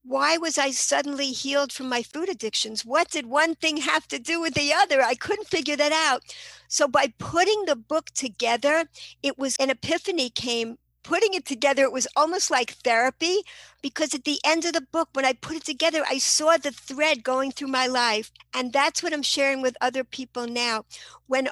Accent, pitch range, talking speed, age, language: American, 245-295 Hz, 205 wpm, 60-79, English